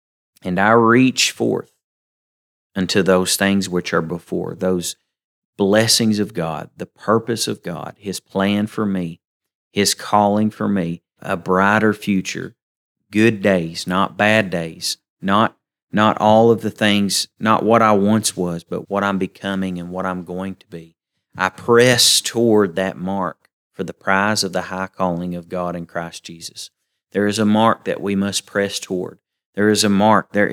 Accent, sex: American, male